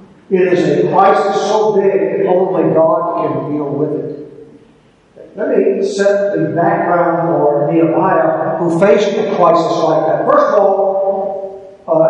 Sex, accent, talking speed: male, American, 150 wpm